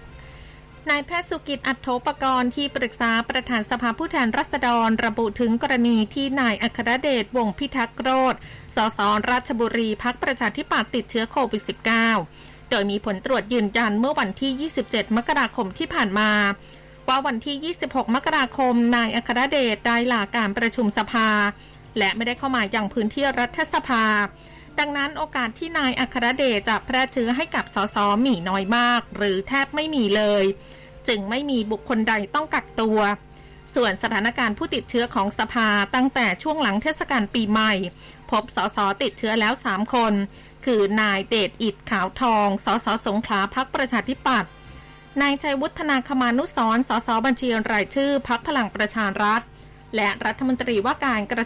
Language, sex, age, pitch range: Thai, female, 20-39, 215-265 Hz